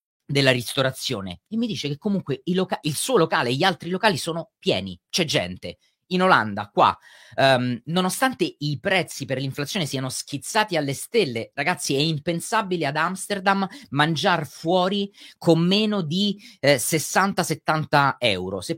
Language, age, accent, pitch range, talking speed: Italian, 30-49, native, 140-200 Hz, 150 wpm